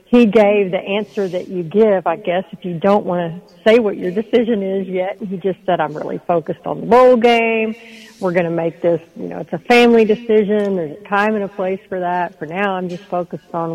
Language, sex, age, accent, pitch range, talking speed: English, female, 50-69, American, 180-225 Hz, 240 wpm